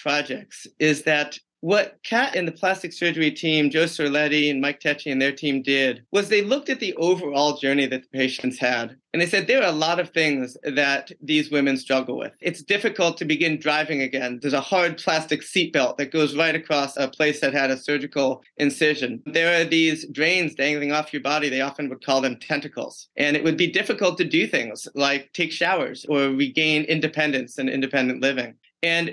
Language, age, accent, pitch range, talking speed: English, 30-49, American, 135-165 Hz, 200 wpm